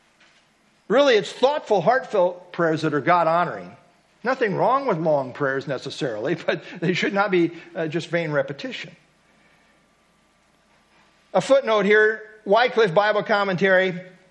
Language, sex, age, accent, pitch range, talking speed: English, male, 50-69, American, 170-235 Hz, 120 wpm